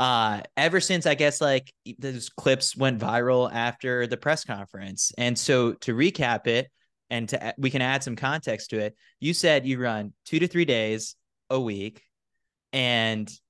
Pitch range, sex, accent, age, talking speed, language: 115-150 Hz, male, American, 20-39, 175 wpm, English